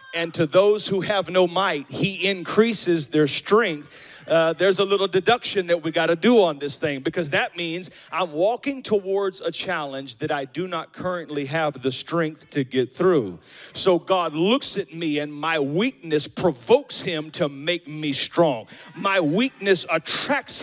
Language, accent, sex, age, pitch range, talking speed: English, American, male, 40-59, 170-245 Hz, 175 wpm